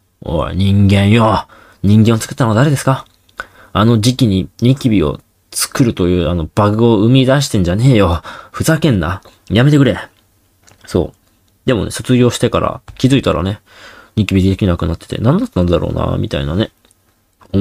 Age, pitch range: 20-39, 90-120 Hz